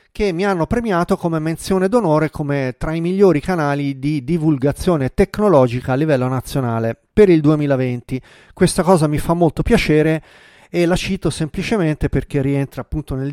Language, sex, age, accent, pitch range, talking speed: Italian, male, 40-59, native, 135-180 Hz, 160 wpm